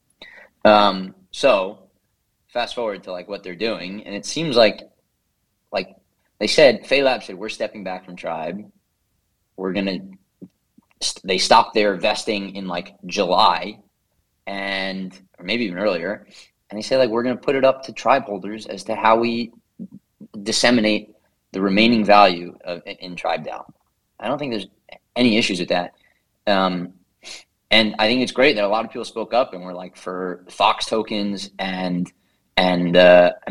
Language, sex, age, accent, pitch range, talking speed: English, male, 30-49, American, 95-110 Hz, 170 wpm